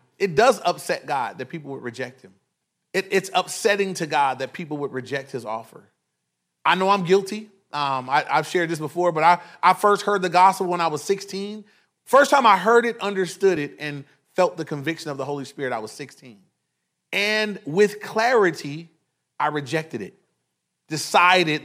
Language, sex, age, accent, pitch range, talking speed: English, male, 30-49, American, 140-190 Hz, 175 wpm